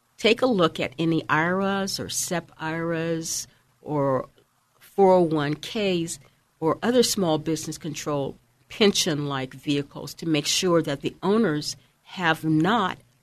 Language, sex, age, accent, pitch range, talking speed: English, female, 50-69, American, 135-175 Hz, 120 wpm